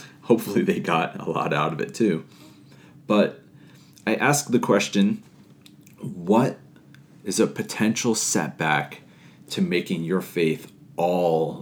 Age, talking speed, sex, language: 30-49, 125 wpm, male, English